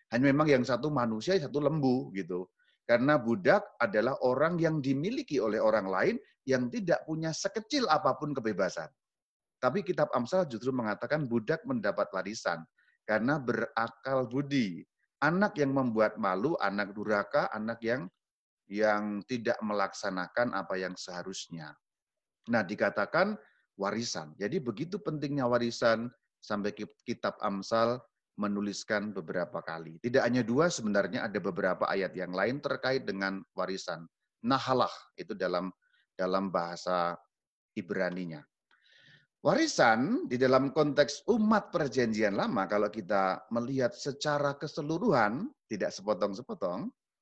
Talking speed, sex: 120 wpm, male